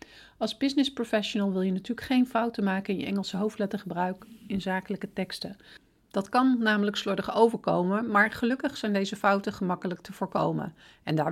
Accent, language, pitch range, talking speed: Dutch, Dutch, 190-230 Hz, 165 wpm